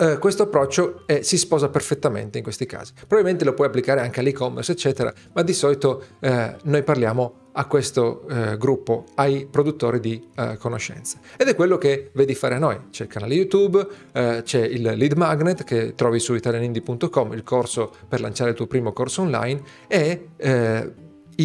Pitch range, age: 120-165 Hz, 40-59